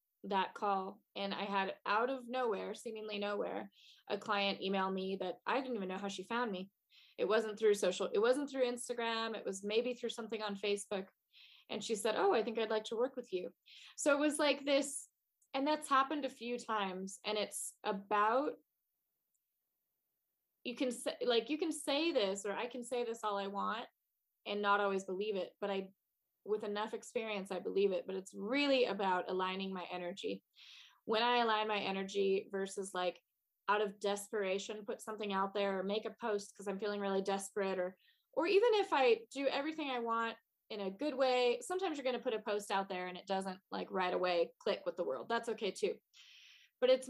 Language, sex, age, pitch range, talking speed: English, female, 20-39, 195-245 Hz, 205 wpm